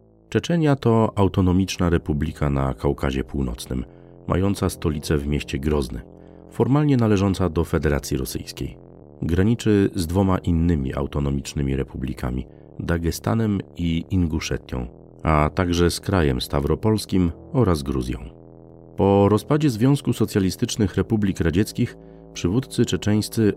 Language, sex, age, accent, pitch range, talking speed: Polish, male, 40-59, native, 75-105 Hz, 105 wpm